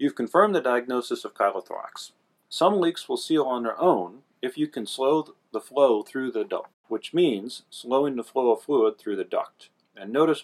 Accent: American